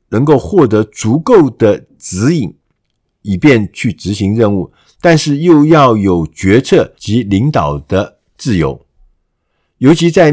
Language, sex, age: Chinese, male, 50-69